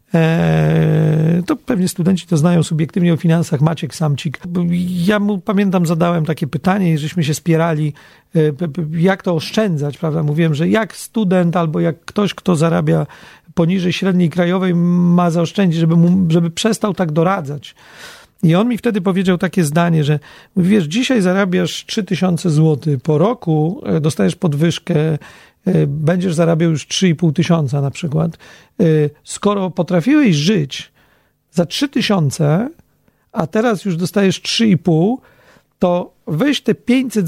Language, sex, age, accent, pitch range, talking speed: Polish, male, 40-59, native, 165-215 Hz, 130 wpm